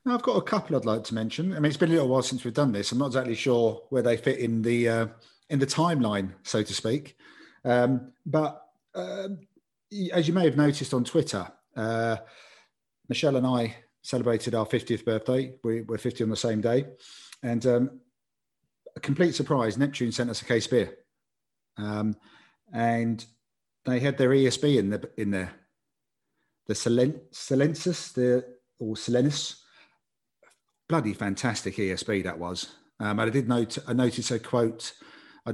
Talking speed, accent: 175 wpm, British